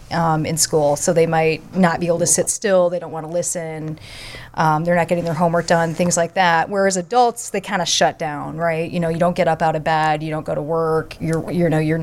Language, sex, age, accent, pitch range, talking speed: English, female, 30-49, American, 165-195 Hz, 265 wpm